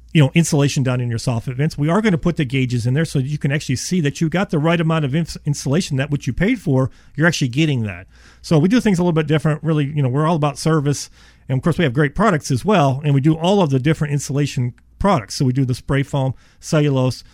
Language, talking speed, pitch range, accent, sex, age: English, 275 wpm, 135-165 Hz, American, male, 40-59